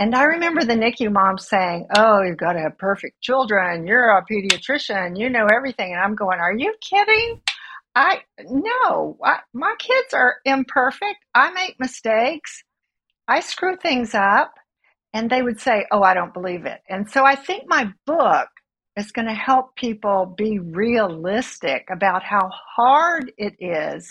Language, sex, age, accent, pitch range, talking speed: English, female, 50-69, American, 195-265 Hz, 165 wpm